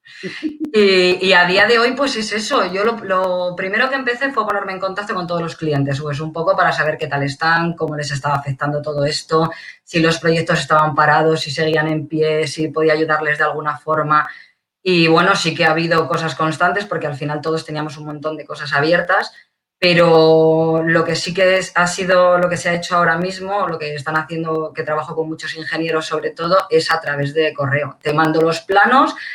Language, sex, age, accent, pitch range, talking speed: Spanish, female, 20-39, Spanish, 155-180 Hz, 215 wpm